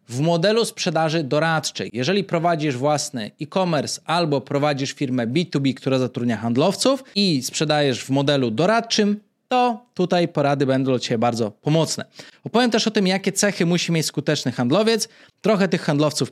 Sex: male